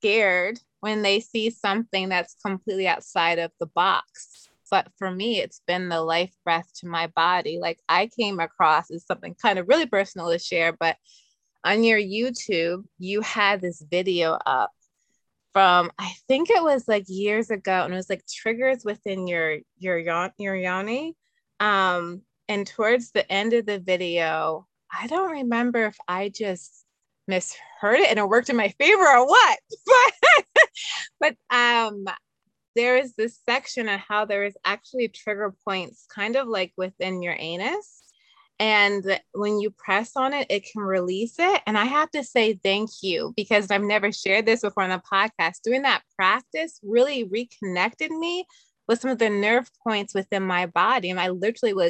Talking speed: 175 wpm